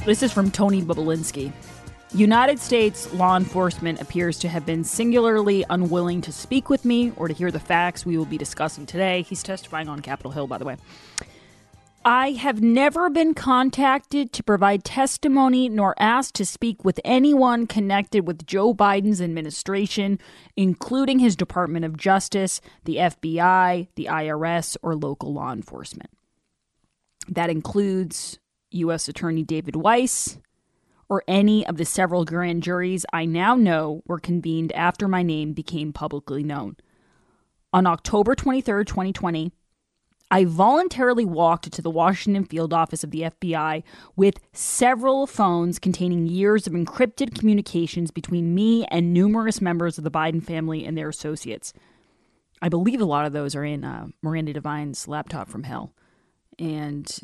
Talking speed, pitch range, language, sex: 150 wpm, 160-210 Hz, English, female